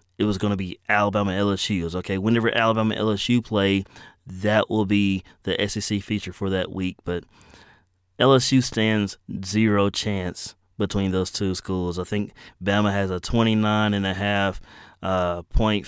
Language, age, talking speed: English, 20-39, 165 wpm